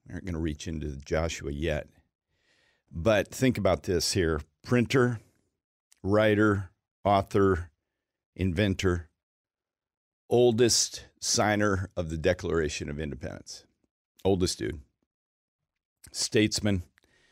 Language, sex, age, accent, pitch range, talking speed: English, male, 50-69, American, 85-110 Hz, 95 wpm